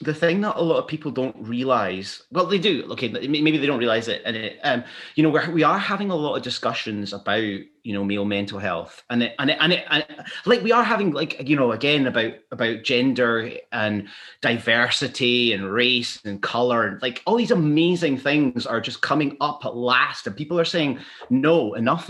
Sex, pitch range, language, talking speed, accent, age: male, 120-170 Hz, English, 215 wpm, British, 30-49